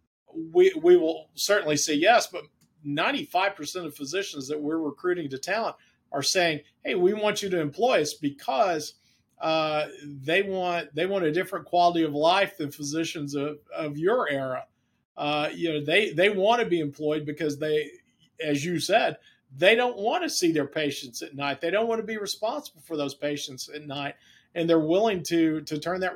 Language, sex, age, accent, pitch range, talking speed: English, male, 50-69, American, 145-175 Hz, 190 wpm